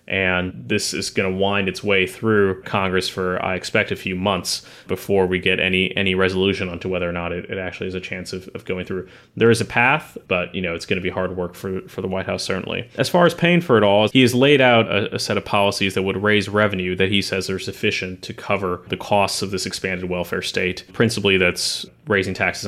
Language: English